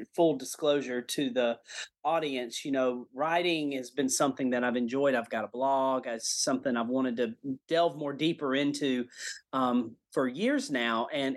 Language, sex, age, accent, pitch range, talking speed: English, male, 30-49, American, 135-190 Hz, 170 wpm